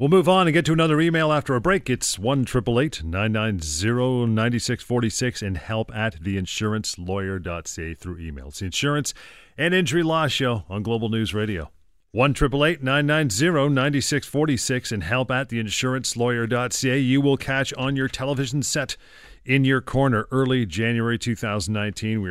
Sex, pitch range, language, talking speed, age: male, 100-130 Hz, English, 140 wpm, 40-59